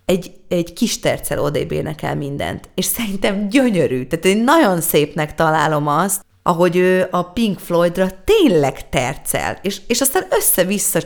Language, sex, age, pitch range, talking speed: Hungarian, female, 30-49, 150-205 Hz, 145 wpm